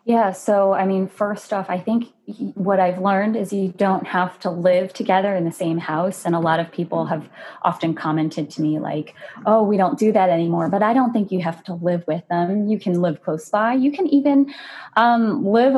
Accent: American